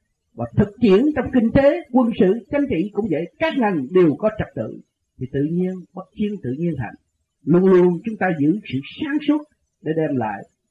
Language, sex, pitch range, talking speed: Vietnamese, male, 155-225 Hz, 205 wpm